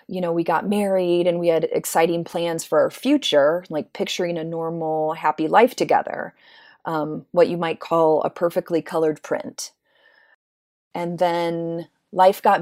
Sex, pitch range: female, 160-185 Hz